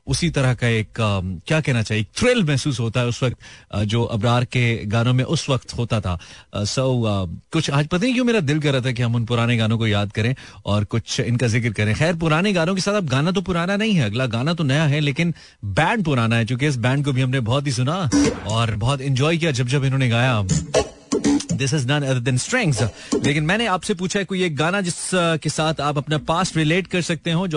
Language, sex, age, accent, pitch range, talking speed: Hindi, male, 30-49, native, 120-160 Hz, 240 wpm